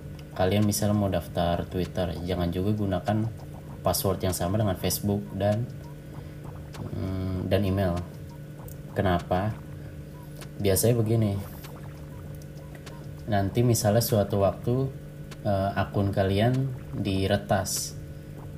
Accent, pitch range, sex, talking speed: native, 95-120 Hz, male, 90 wpm